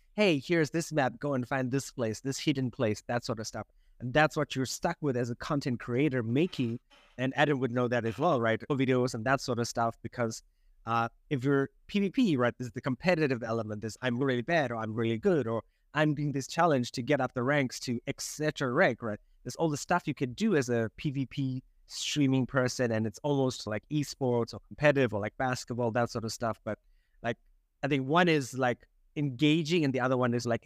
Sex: male